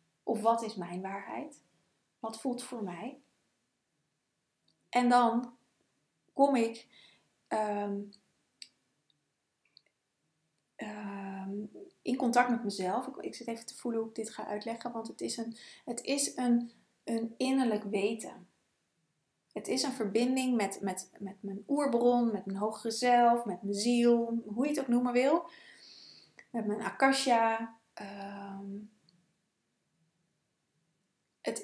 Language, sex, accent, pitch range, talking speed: Dutch, female, Dutch, 205-240 Hz, 120 wpm